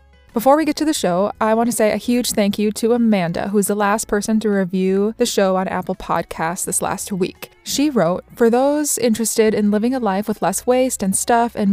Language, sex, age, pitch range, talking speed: English, female, 20-39, 190-230 Hz, 230 wpm